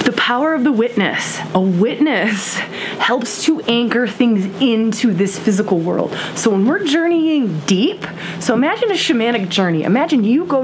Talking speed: 160 wpm